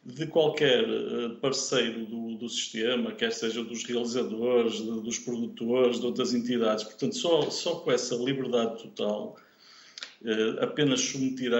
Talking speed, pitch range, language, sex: 125 wpm, 120-145 Hz, Portuguese, male